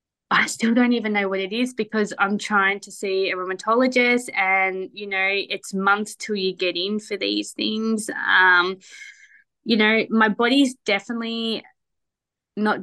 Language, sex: English, female